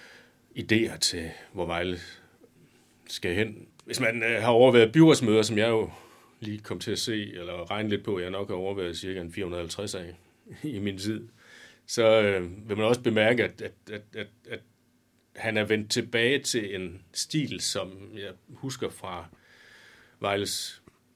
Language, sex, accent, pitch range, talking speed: Danish, male, native, 90-115 Hz, 160 wpm